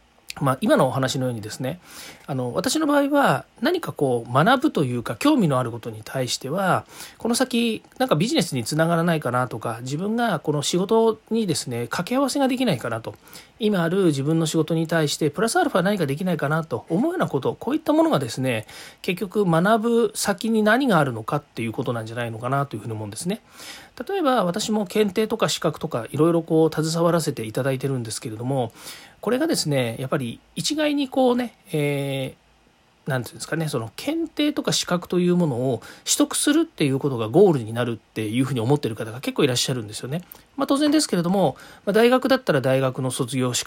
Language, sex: Japanese, male